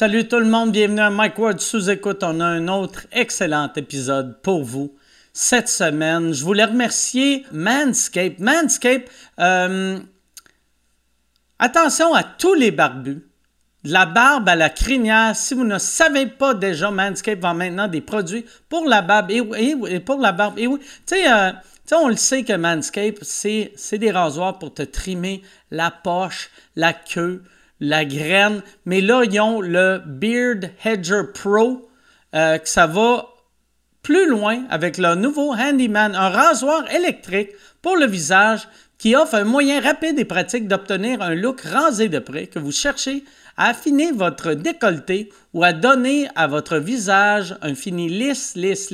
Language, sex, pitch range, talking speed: French, male, 180-245 Hz, 165 wpm